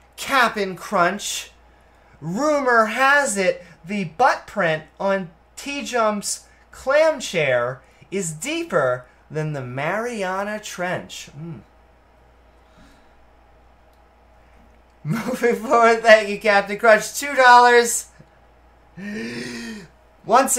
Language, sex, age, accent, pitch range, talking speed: English, male, 30-49, American, 175-250 Hz, 85 wpm